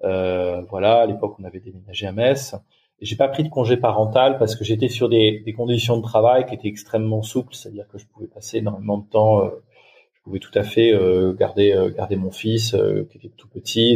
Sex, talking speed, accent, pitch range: male, 235 wpm, French, 100-120 Hz